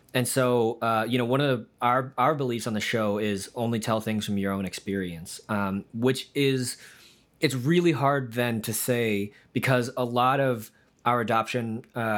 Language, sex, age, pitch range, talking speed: English, male, 20-39, 105-125 Hz, 180 wpm